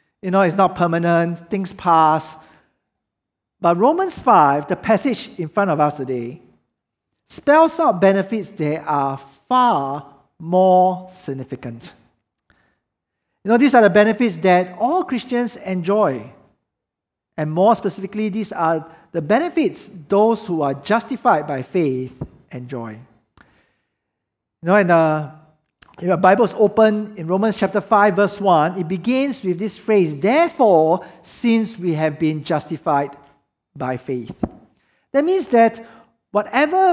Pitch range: 150-215 Hz